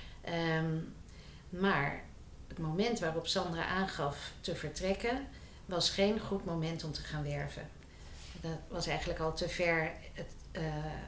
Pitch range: 155-180 Hz